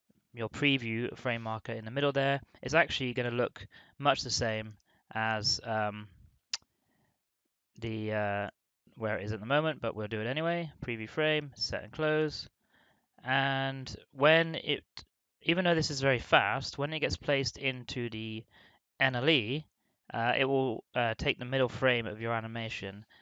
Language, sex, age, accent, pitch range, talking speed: English, male, 20-39, British, 110-135 Hz, 165 wpm